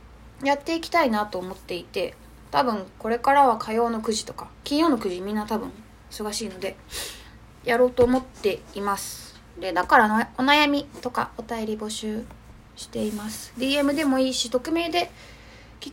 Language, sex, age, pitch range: Japanese, female, 20-39, 205-270 Hz